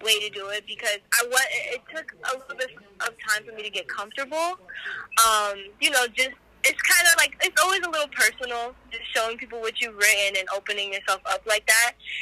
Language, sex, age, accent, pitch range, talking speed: English, female, 10-29, American, 200-250 Hz, 215 wpm